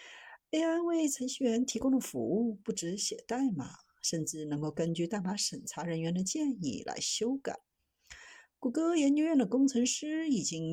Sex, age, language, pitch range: female, 50-69, Chinese, 170-275 Hz